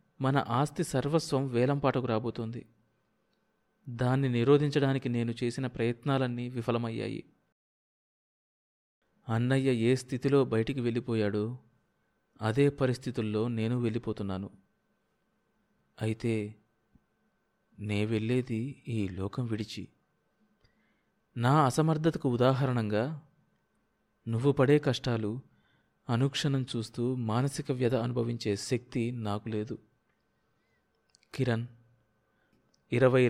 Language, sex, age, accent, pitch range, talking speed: Telugu, male, 30-49, native, 115-140 Hz, 75 wpm